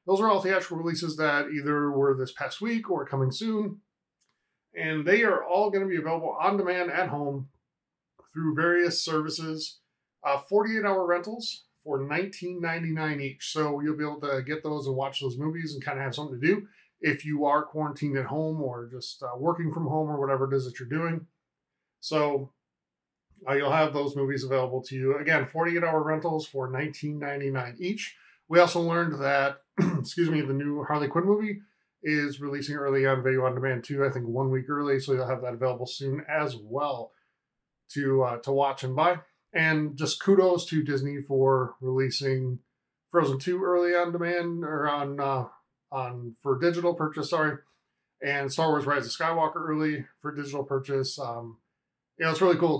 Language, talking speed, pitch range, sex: English, 185 wpm, 135-165 Hz, male